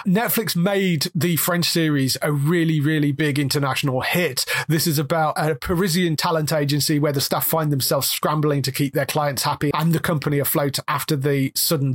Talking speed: 180 wpm